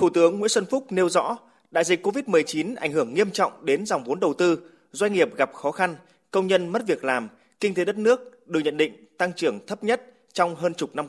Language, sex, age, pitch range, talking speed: Vietnamese, male, 20-39, 155-205 Hz, 240 wpm